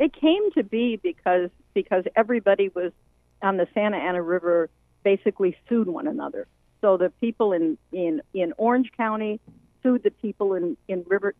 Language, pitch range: English, 170-220 Hz